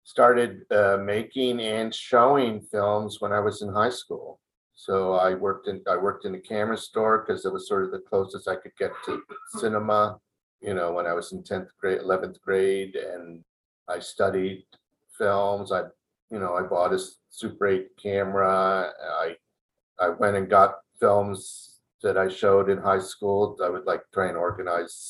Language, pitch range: English, 95-105 Hz